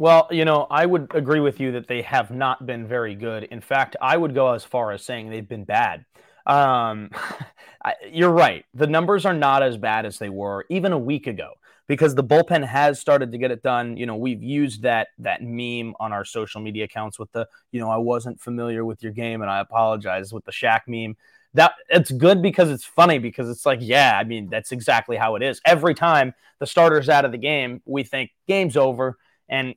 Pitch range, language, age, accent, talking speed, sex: 110-155 Hz, English, 20-39, American, 225 wpm, male